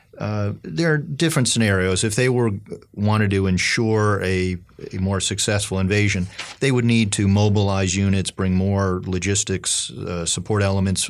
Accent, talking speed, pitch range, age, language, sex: American, 150 wpm, 90-105 Hz, 40-59, English, male